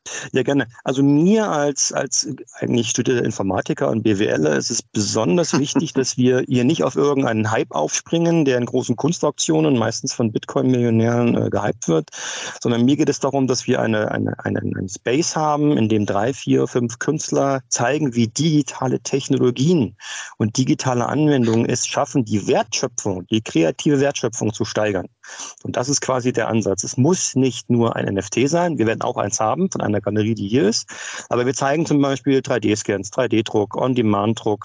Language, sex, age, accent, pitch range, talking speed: German, male, 40-59, German, 115-140 Hz, 170 wpm